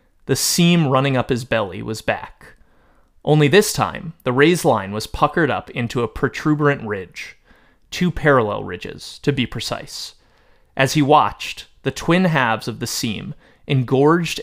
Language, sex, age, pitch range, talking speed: English, male, 30-49, 115-150 Hz, 155 wpm